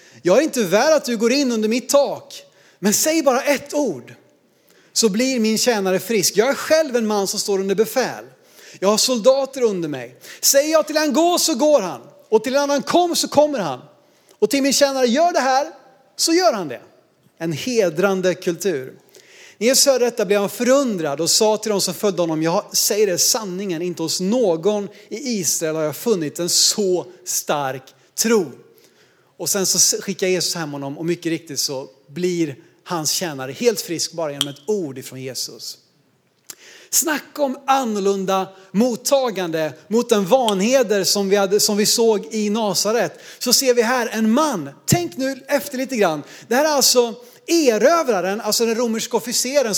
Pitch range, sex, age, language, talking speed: 185-265 Hz, male, 30-49, Swedish, 185 wpm